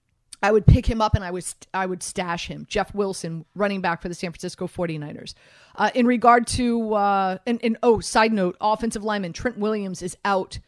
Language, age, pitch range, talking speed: English, 30-49, 190-235 Hz, 195 wpm